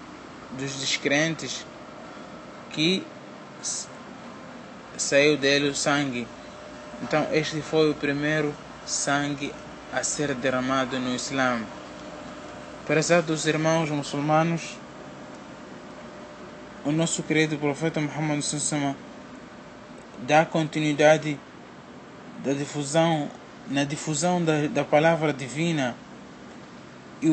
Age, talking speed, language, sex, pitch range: 20-39, 85 wpm, Portuguese, male, 145-160 Hz